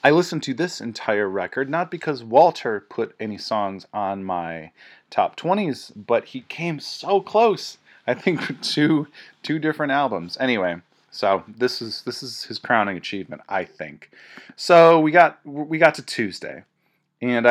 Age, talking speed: 30-49, 160 wpm